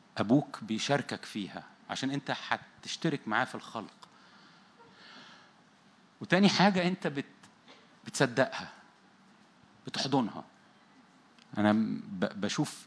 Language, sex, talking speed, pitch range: Arabic, male, 75 wpm, 130-175 Hz